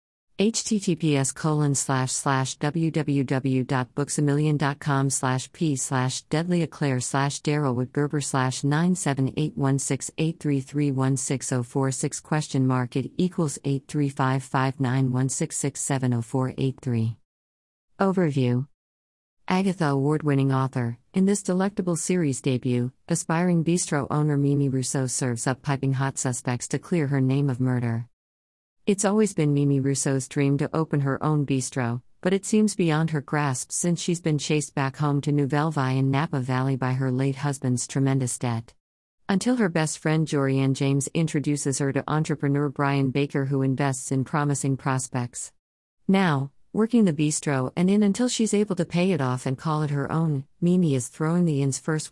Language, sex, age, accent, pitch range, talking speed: English, female, 50-69, American, 130-155 Hz, 140 wpm